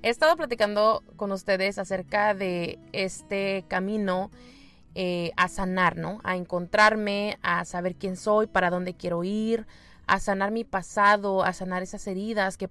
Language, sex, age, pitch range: Spanish, female, 20-39, 185-210 Hz